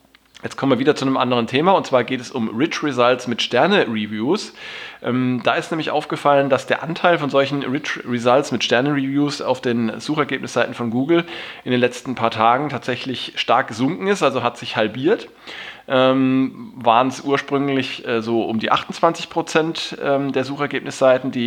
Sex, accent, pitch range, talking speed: male, German, 115-140 Hz, 170 wpm